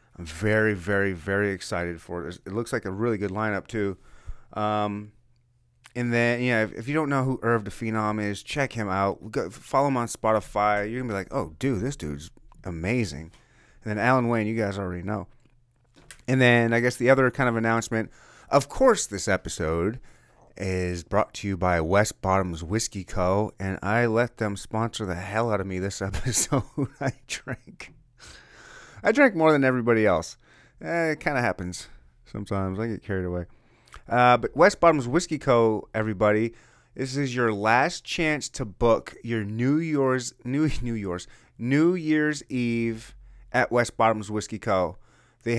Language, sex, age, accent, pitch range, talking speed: English, male, 30-49, American, 100-125 Hz, 180 wpm